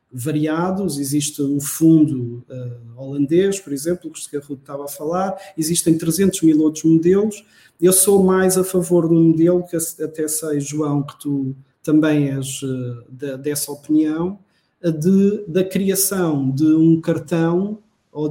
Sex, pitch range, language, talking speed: male, 145-180 Hz, Portuguese, 160 wpm